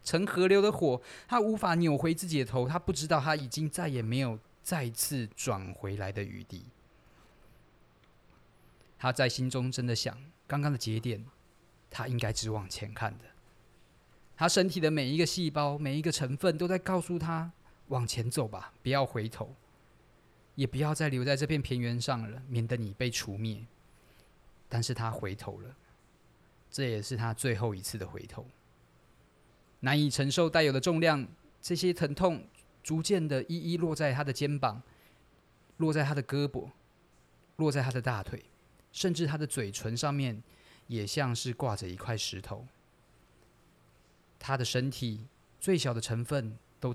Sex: male